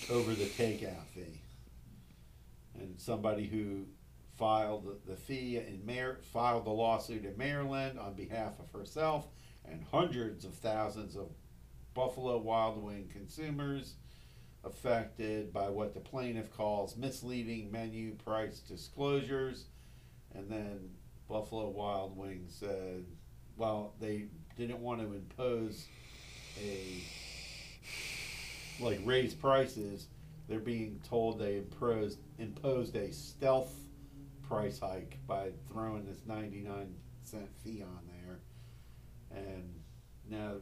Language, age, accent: English, 50-69, American